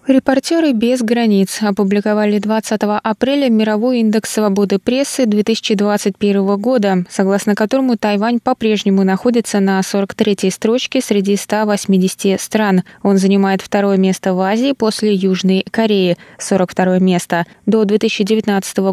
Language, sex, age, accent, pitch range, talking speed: Russian, female, 20-39, native, 190-225 Hz, 115 wpm